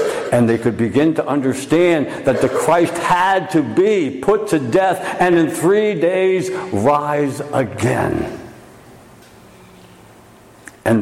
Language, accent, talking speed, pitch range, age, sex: English, American, 120 wpm, 110-165 Hz, 60-79, male